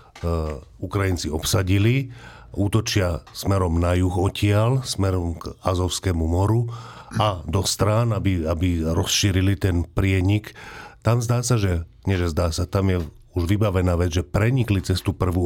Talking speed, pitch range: 140 wpm, 90-105 Hz